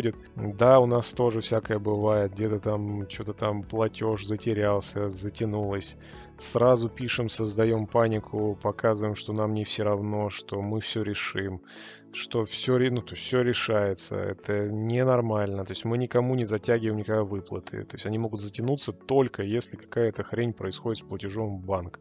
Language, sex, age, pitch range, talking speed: Russian, male, 20-39, 105-115 Hz, 155 wpm